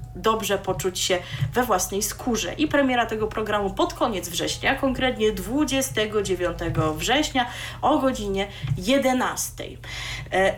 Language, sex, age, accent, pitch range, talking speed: Polish, female, 30-49, native, 195-275 Hz, 115 wpm